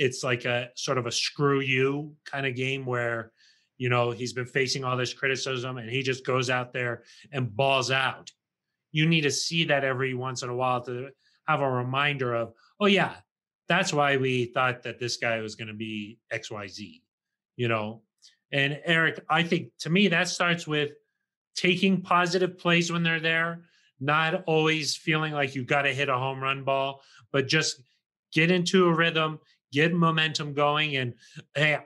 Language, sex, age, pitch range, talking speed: English, male, 30-49, 125-155 Hz, 190 wpm